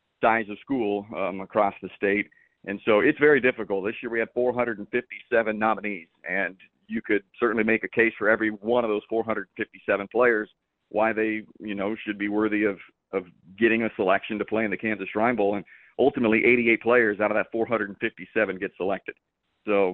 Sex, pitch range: male, 105-115 Hz